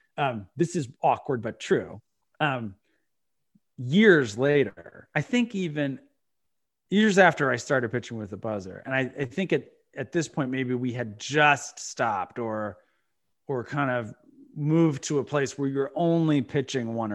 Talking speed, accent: 160 wpm, American